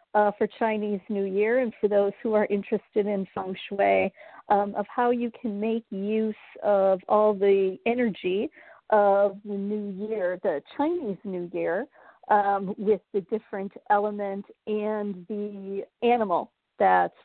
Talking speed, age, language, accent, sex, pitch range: 145 wpm, 40-59, English, American, female, 200-235 Hz